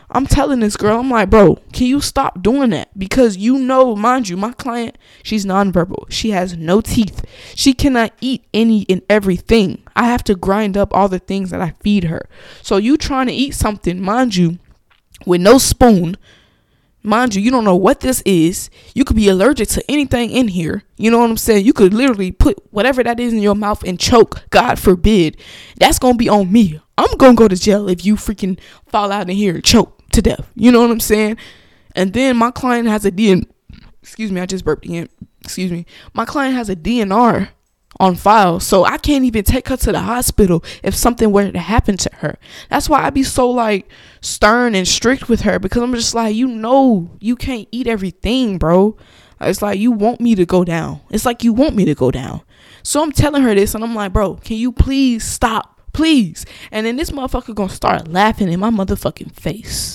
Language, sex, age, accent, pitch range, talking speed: English, female, 20-39, American, 190-245 Hz, 220 wpm